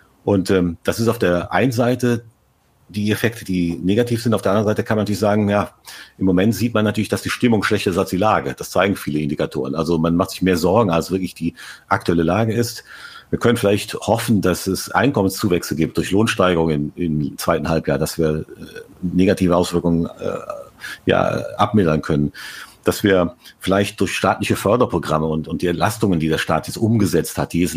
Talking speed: 195 wpm